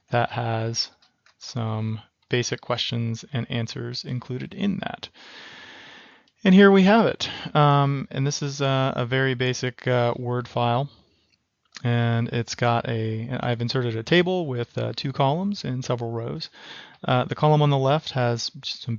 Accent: American